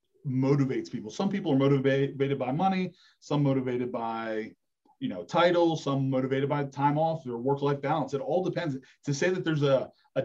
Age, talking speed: 30-49, 185 wpm